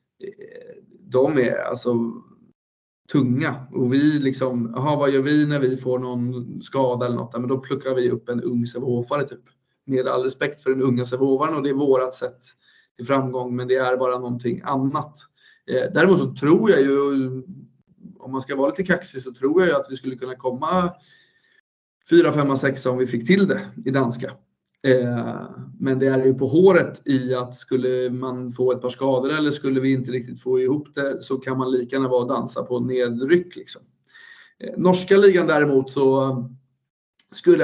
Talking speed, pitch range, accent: 180 wpm, 125-145 Hz, native